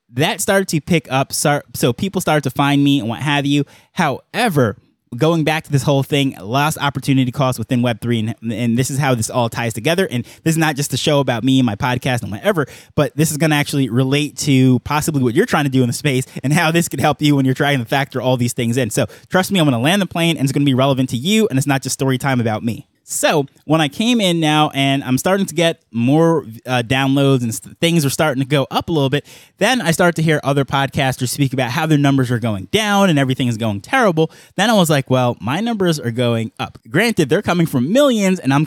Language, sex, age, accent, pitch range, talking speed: English, male, 20-39, American, 130-160 Hz, 260 wpm